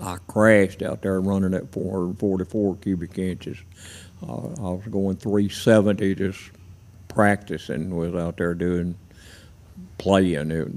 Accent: American